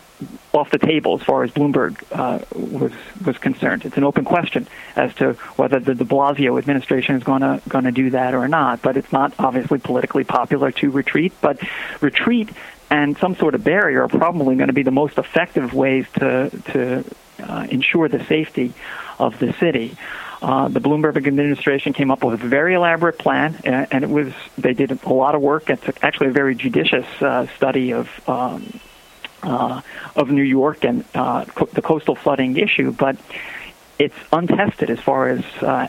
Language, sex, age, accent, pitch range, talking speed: English, male, 50-69, American, 135-145 Hz, 185 wpm